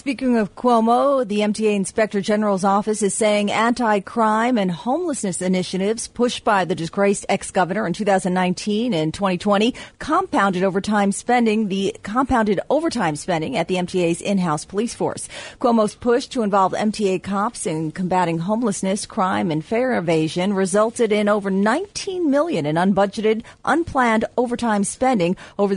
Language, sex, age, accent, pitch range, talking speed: English, female, 40-59, American, 180-225 Hz, 140 wpm